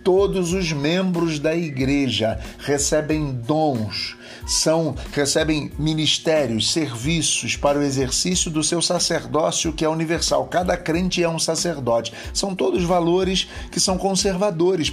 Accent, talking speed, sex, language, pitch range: Brazilian, 125 wpm, male, Portuguese, 130-175 Hz